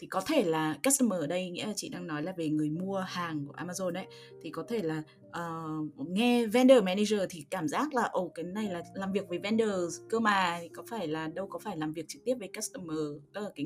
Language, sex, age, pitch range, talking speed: Vietnamese, female, 20-39, 155-215 Hz, 260 wpm